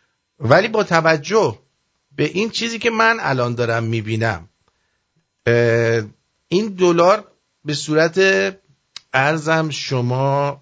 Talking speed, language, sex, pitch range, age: 95 wpm, English, male, 125-175 Hz, 50-69